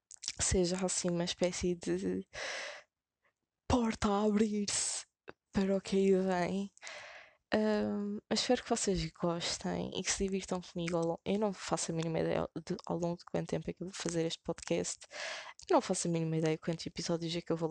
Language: Portuguese